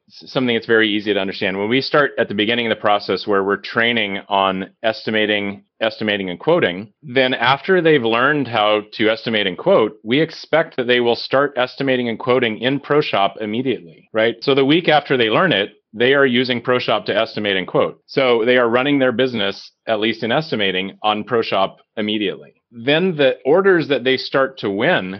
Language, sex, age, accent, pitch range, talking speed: English, male, 30-49, American, 105-130 Hz, 195 wpm